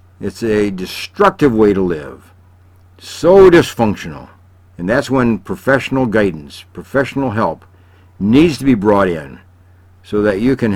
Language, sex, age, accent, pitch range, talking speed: English, male, 60-79, American, 90-130 Hz, 135 wpm